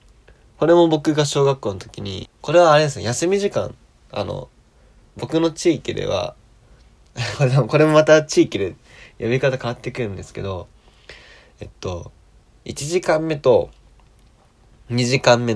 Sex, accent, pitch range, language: male, native, 110-160 Hz, Japanese